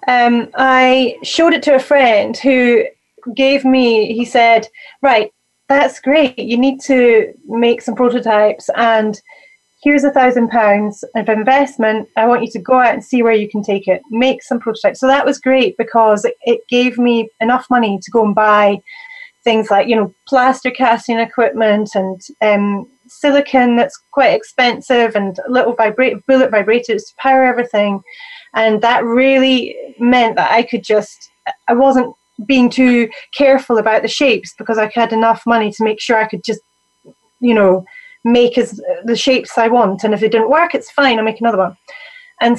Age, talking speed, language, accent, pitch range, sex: 30-49, 175 wpm, English, British, 220-265 Hz, female